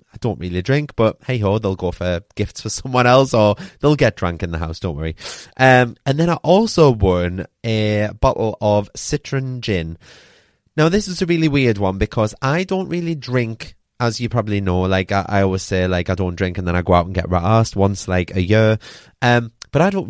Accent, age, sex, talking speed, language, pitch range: British, 30-49, male, 220 wpm, English, 100-140 Hz